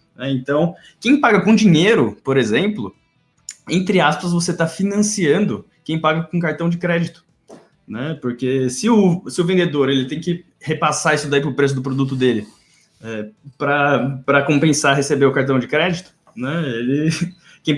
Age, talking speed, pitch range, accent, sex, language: 20-39, 160 wpm, 140-180 Hz, Brazilian, male, Portuguese